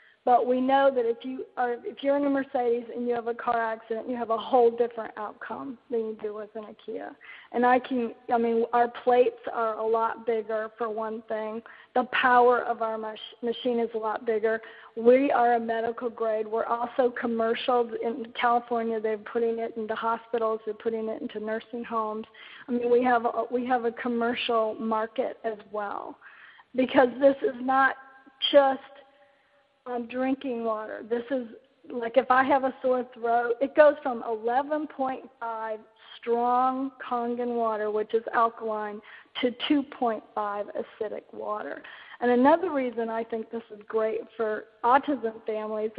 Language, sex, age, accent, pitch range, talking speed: English, female, 40-59, American, 225-255 Hz, 165 wpm